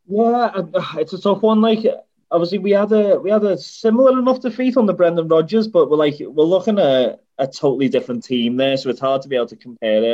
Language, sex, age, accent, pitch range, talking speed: English, male, 20-39, British, 115-150 Hz, 245 wpm